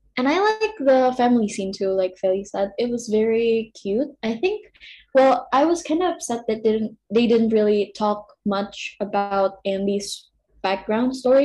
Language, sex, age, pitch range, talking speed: Indonesian, female, 10-29, 200-255 Hz, 180 wpm